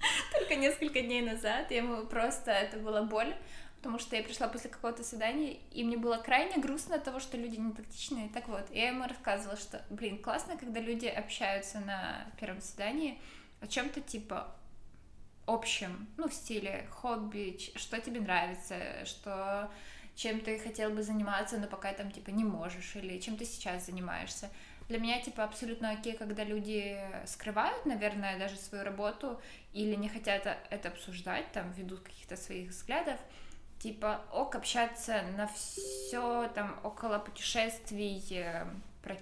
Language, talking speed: Ukrainian, 155 wpm